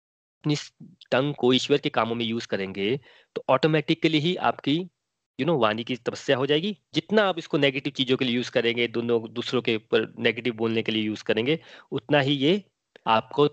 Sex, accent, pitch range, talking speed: male, native, 120-170 Hz, 190 wpm